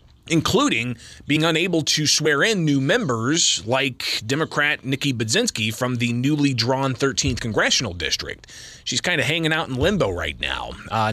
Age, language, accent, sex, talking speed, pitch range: 30-49, English, American, male, 155 wpm, 125-155 Hz